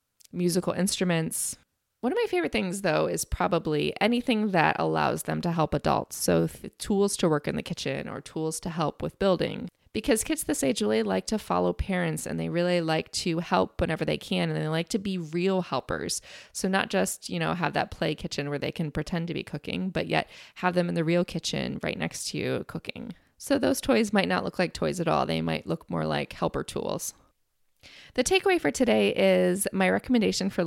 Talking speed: 215 wpm